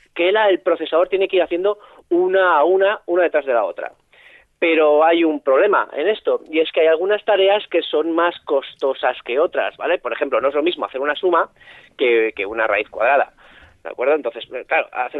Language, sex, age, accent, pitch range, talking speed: Spanish, male, 30-49, Spanish, 160-230 Hz, 210 wpm